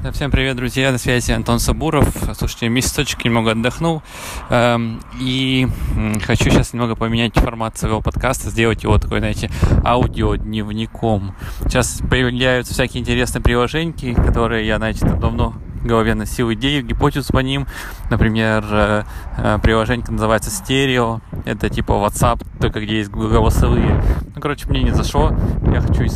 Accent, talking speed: native, 135 wpm